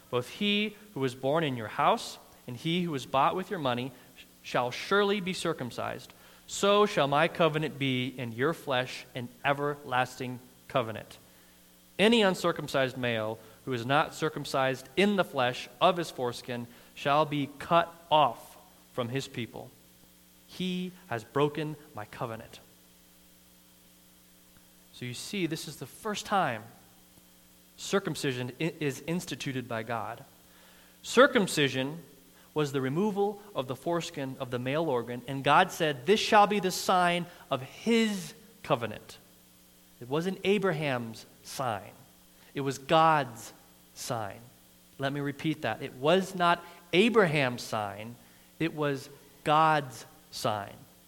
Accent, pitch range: American, 100-165 Hz